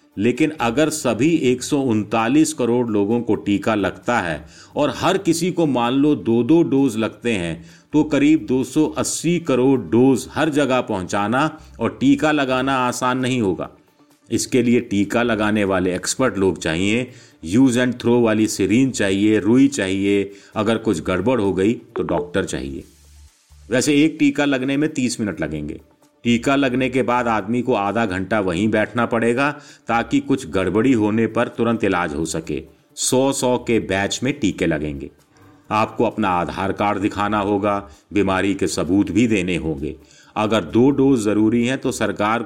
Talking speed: 160 wpm